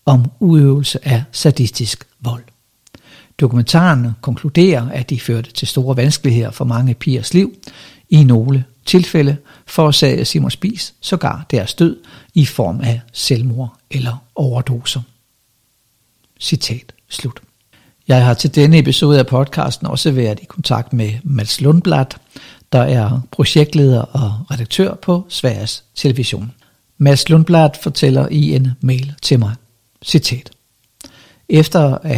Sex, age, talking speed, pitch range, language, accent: male, 60-79, 125 wpm, 120-150 Hz, Danish, native